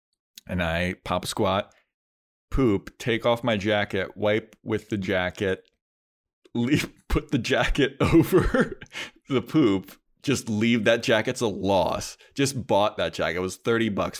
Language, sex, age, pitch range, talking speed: English, male, 30-49, 95-115 Hz, 145 wpm